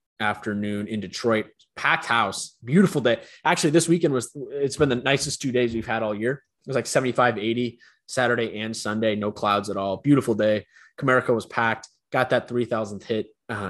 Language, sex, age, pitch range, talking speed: English, male, 20-39, 110-140 Hz, 190 wpm